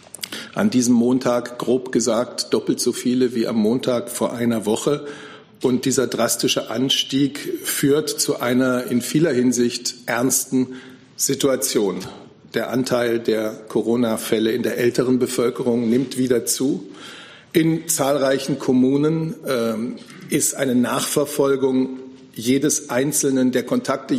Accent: German